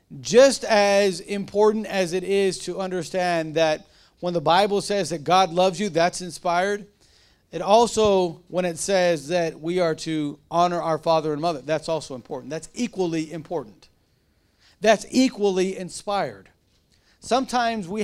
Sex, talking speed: male, 145 wpm